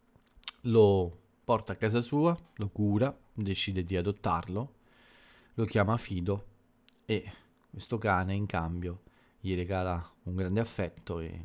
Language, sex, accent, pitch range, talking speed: Italian, male, native, 90-115 Hz, 125 wpm